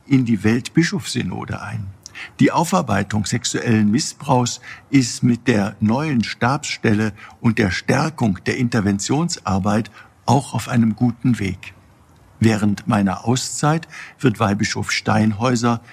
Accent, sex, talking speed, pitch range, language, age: German, male, 110 wpm, 105-120 Hz, German, 60-79